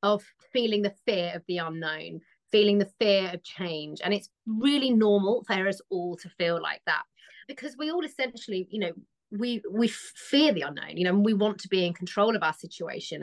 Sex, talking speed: female, 210 wpm